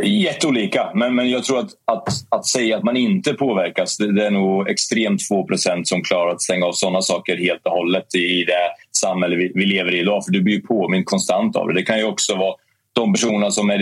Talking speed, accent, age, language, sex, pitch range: 240 wpm, native, 30-49, Swedish, male, 95-115 Hz